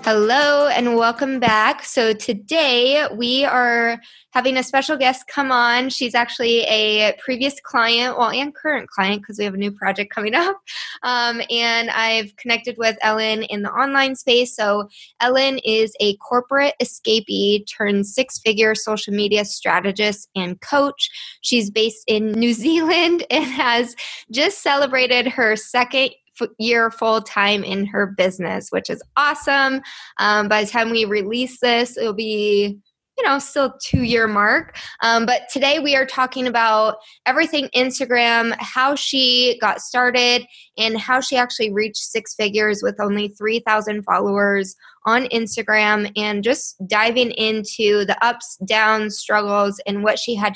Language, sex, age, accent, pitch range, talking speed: English, female, 20-39, American, 210-255 Hz, 150 wpm